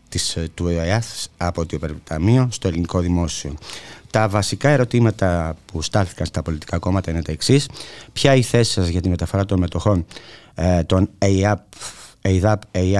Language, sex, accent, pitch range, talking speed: Greek, male, Spanish, 90-105 Hz, 140 wpm